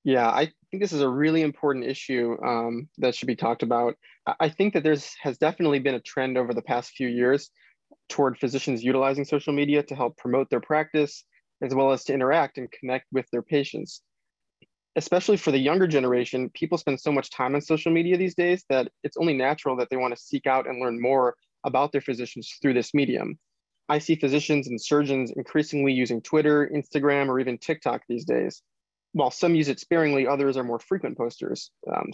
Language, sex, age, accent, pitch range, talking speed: English, male, 20-39, American, 130-150 Hz, 200 wpm